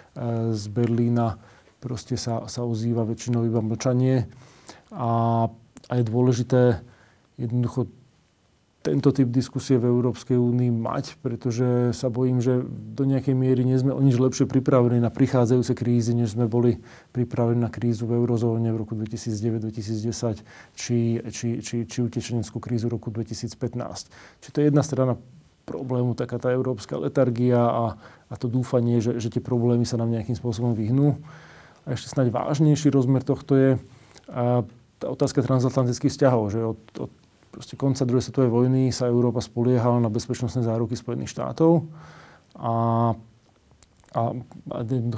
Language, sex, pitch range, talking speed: Slovak, male, 115-130 Hz, 140 wpm